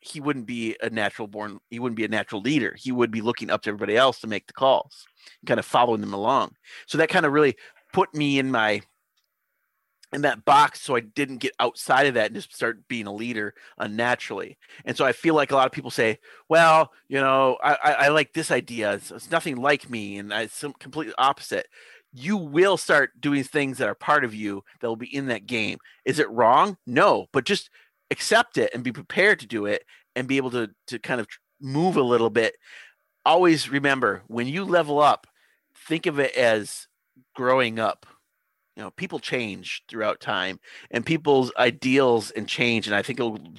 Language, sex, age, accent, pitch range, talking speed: English, male, 30-49, American, 115-150 Hz, 210 wpm